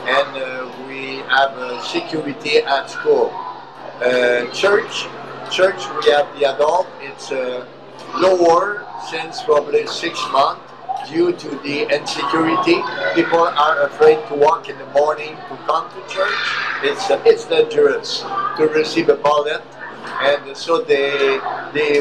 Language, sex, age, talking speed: English, male, 60-79, 140 wpm